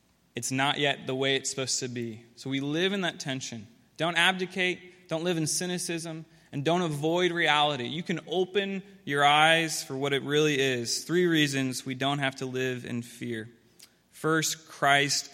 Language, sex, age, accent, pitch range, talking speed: English, male, 20-39, American, 130-160 Hz, 180 wpm